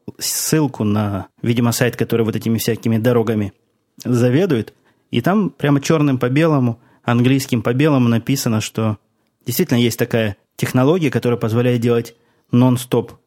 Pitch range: 110-135 Hz